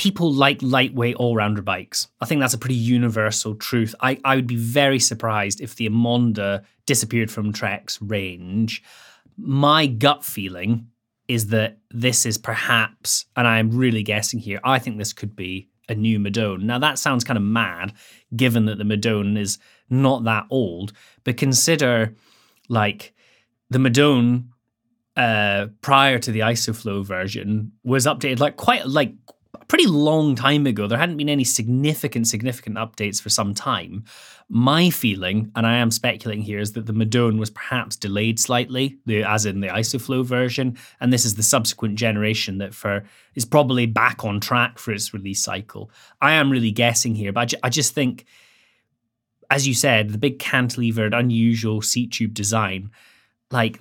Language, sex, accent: English, male, British